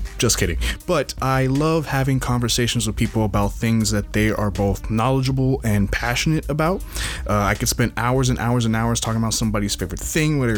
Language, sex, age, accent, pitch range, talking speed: English, male, 20-39, American, 100-130 Hz, 195 wpm